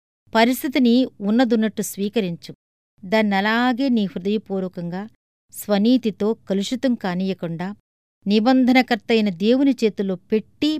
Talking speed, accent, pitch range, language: 70 wpm, native, 185-245 Hz, Telugu